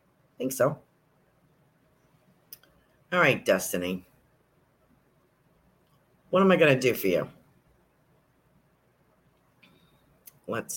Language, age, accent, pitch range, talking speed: English, 50-69, American, 135-175 Hz, 80 wpm